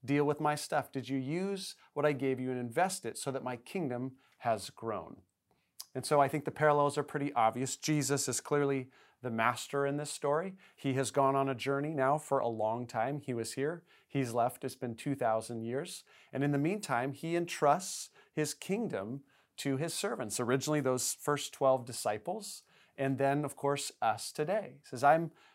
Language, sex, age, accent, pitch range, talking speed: English, male, 40-59, American, 135-170 Hz, 195 wpm